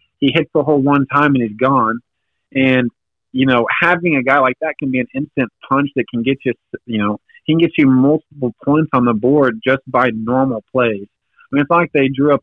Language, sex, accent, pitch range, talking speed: English, male, American, 120-140 Hz, 230 wpm